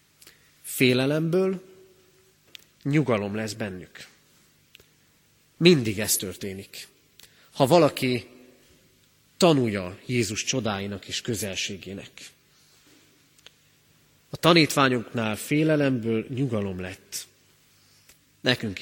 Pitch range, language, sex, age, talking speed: 105-135 Hz, Hungarian, male, 30-49, 65 wpm